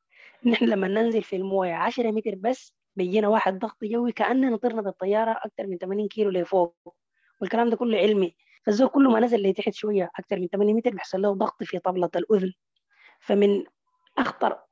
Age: 20-39